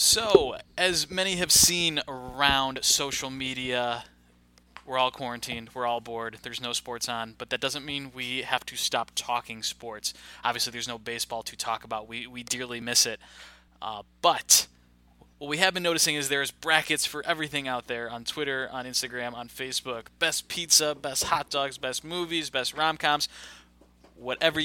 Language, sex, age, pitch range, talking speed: English, male, 20-39, 120-150 Hz, 170 wpm